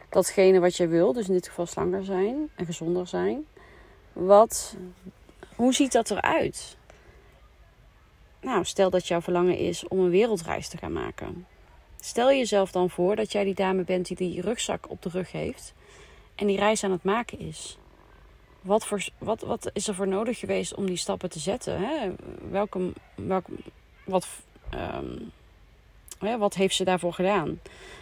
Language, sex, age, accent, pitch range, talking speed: Dutch, female, 30-49, Dutch, 180-205 Hz, 165 wpm